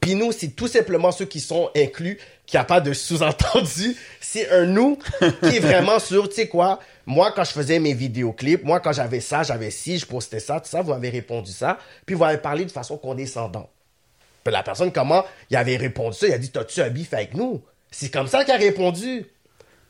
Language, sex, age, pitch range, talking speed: French, male, 30-49, 125-180 Hz, 240 wpm